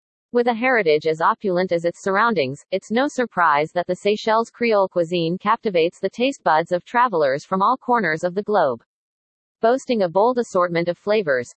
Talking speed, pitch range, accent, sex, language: 175 wpm, 175-230 Hz, American, female, English